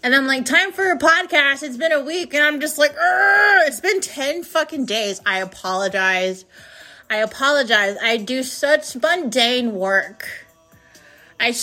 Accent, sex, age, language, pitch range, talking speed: American, female, 30-49, English, 215-270 Hz, 160 wpm